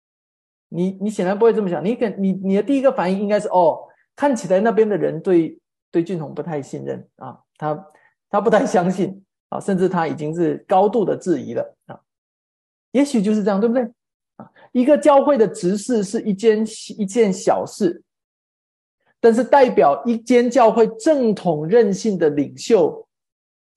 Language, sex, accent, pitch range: Chinese, male, native, 180-235 Hz